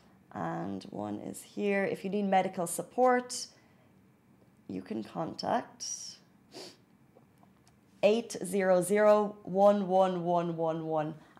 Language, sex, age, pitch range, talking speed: Arabic, female, 30-49, 175-200 Hz, 70 wpm